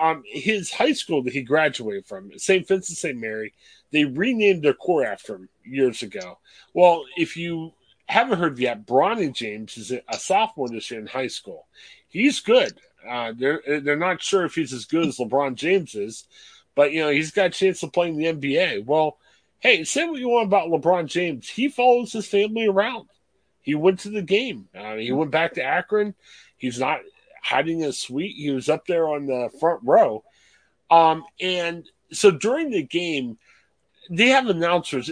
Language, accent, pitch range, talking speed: English, American, 135-200 Hz, 190 wpm